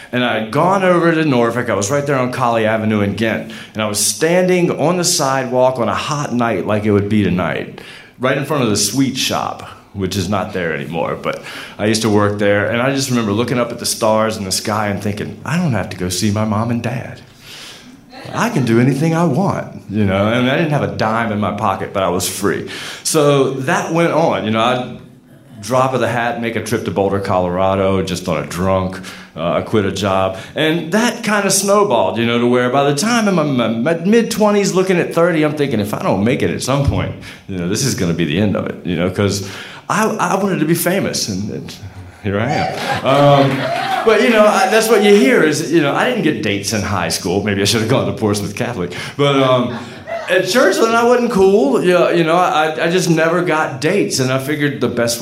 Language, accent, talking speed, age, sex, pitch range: English, American, 240 wpm, 30-49, male, 105-160 Hz